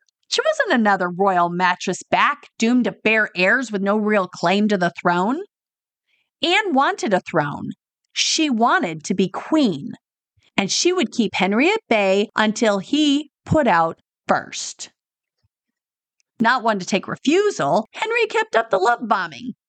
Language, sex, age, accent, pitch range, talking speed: English, female, 40-59, American, 215-320 Hz, 150 wpm